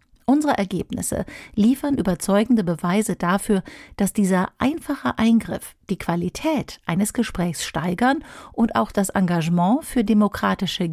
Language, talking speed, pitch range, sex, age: German, 115 wpm, 180-240 Hz, female, 50-69